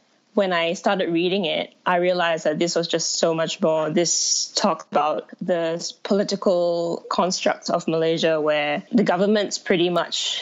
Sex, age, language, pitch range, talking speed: female, 20-39, English, 165-205 Hz, 155 wpm